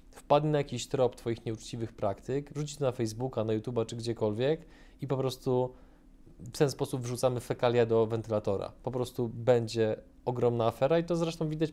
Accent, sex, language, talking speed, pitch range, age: native, male, Polish, 175 wpm, 110-130 Hz, 20-39